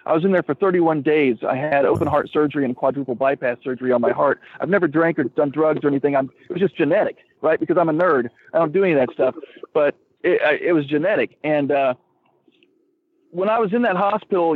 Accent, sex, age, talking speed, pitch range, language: American, male, 40-59, 230 wpm, 150-205 Hz, English